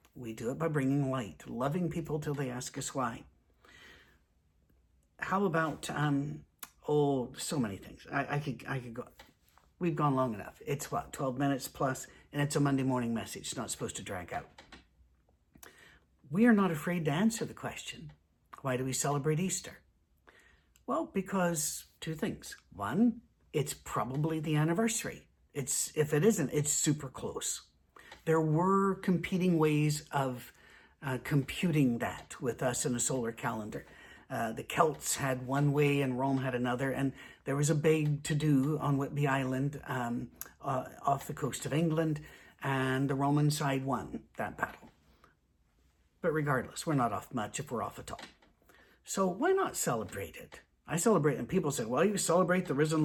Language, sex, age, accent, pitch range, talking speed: English, male, 50-69, American, 130-160 Hz, 170 wpm